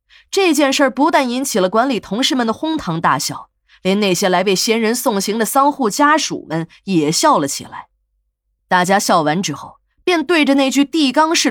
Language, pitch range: Chinese, 175-275 Hz